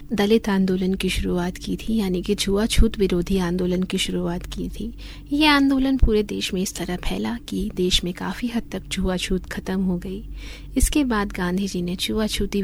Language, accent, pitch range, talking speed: Hindi, native, 175-210 Hz, 195 wpm